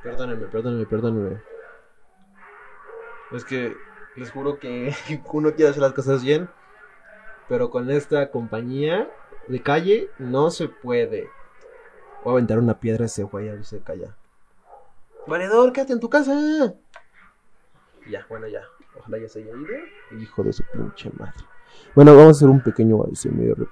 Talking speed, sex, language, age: 145 wpm, male, Spanish, 20-39